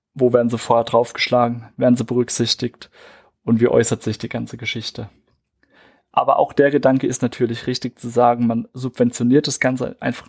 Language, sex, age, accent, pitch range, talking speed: German, male, 30-49, German, 120-135 Hz, 170 wpm